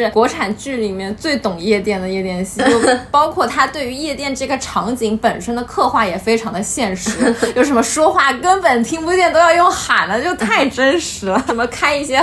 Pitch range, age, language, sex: 220-275 Hz, 20-39, Chinese, female